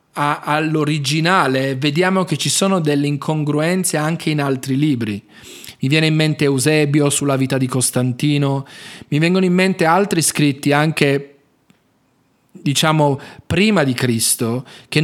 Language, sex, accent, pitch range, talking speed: Italian, male, native, 145-185 Hz, 130 wpm